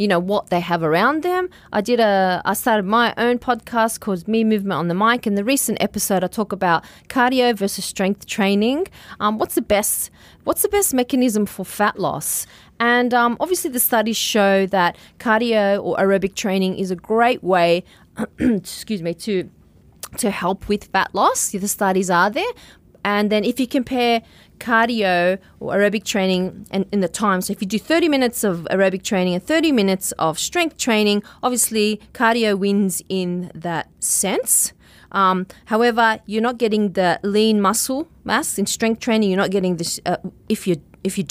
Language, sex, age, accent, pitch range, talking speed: English, female, 30-49, Australian, 190-240 Hz, 180 wpm